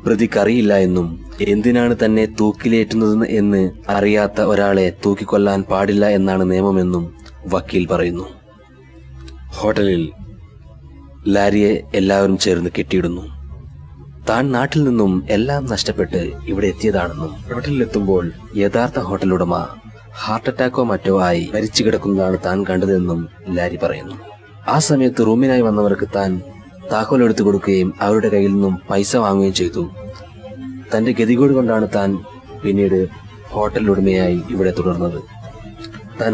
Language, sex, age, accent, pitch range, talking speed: Malayalam, male, 30-49, native, 90-110 Hz, 100 wpm